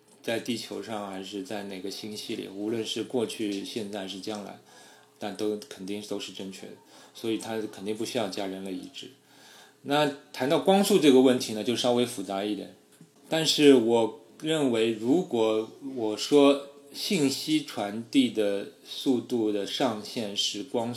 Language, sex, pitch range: Chinese, male, 100-125 Hz